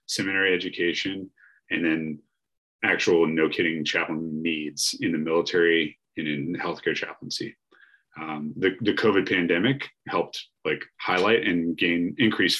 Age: 30-49